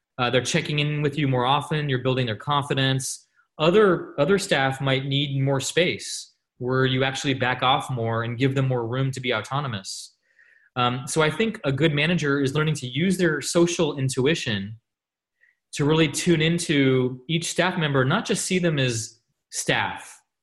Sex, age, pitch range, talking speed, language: male, 20-39, 120-145 Hz, 175 wpm, English